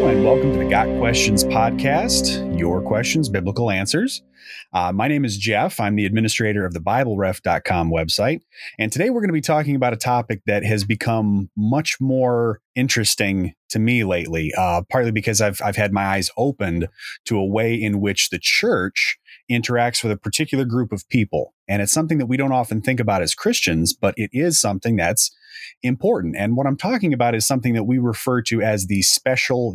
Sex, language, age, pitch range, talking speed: male, English, 30-49, 95-125 Hz, 195 wpm